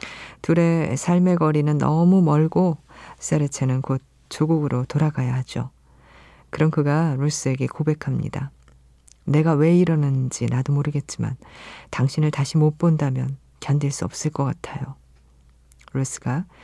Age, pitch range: 40-59, 125-155 Hz